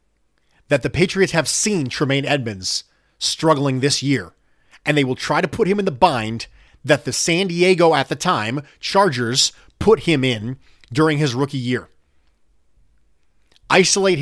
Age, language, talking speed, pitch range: 30-49, English, 150 wpm, 120-165 Hz